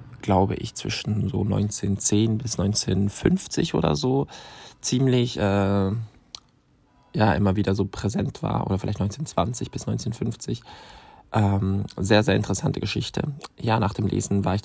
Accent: German